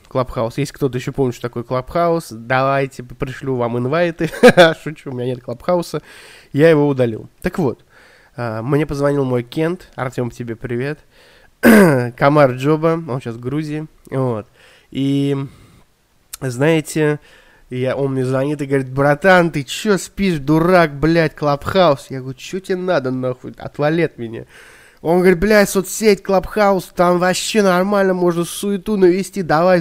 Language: Russian